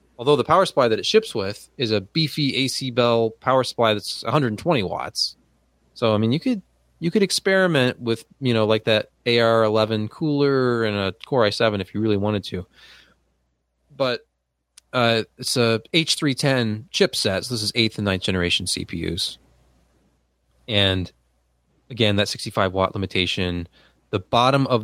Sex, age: male, 20-39